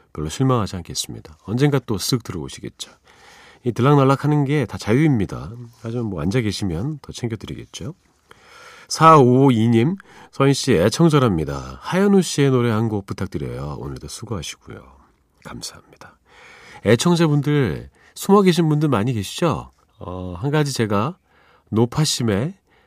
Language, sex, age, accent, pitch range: Korean, male, 40-59, native, 95-145 Hz